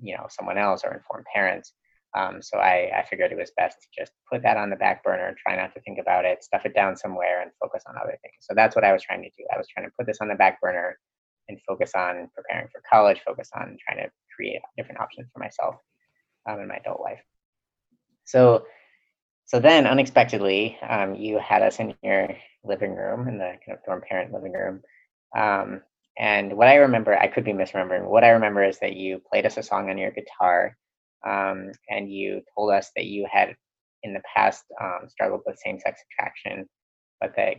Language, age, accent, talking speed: English, 30-49, American, 215 wpm